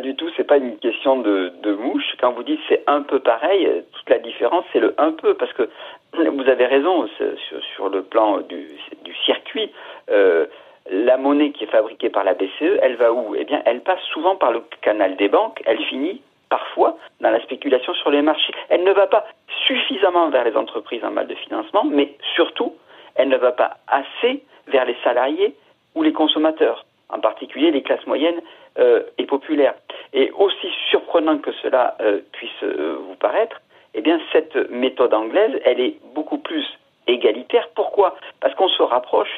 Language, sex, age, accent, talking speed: French, male, 50-69, French, 190 wpm